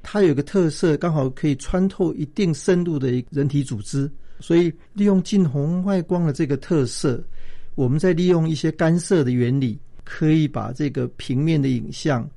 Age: 50-69